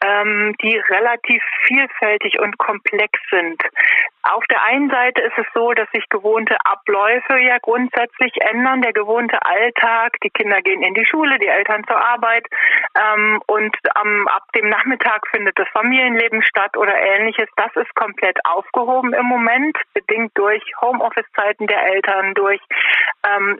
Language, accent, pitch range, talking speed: German, German, 215-255 Hz, 145 wpm